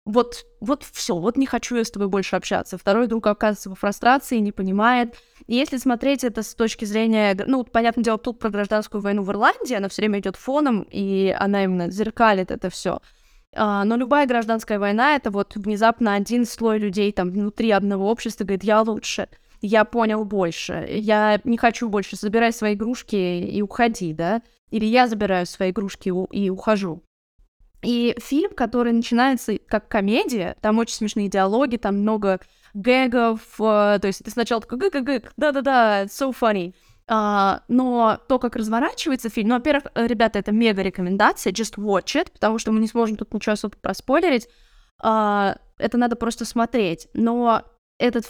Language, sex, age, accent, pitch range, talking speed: Russian, female, 20-39, native, 205-240 Hz, 175 wpm